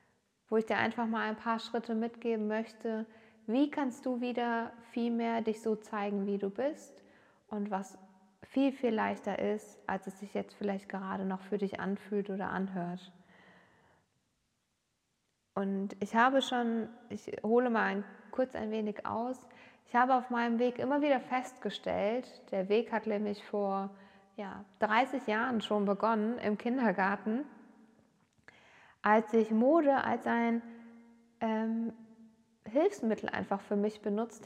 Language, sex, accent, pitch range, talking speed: German, female, German, 210-250 Hz, 145 wpm